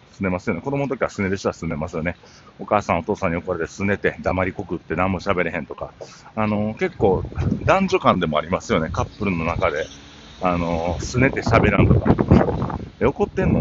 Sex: male